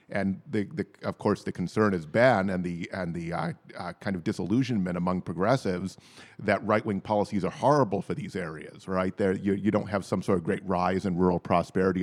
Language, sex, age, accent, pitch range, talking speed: English, male, 40-59, American, 95-115 Hz, 210 wpm